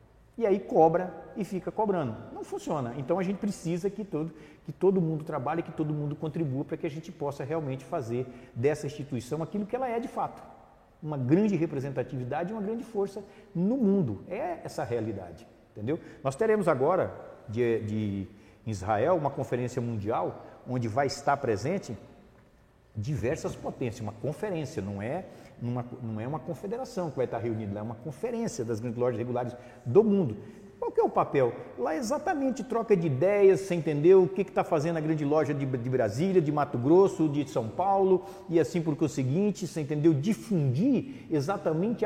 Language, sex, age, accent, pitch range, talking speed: Portuguese, male, 50-69, Brazilian, 130-190 Hz, 180 wpm